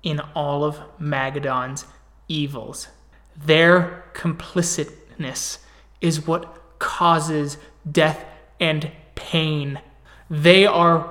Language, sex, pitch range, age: English, male, 150-175 Hz, 20-39